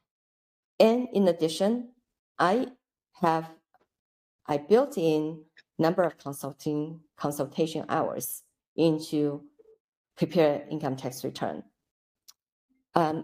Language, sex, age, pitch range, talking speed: English, female, 50-69, 145-180 Hz, 85 wpm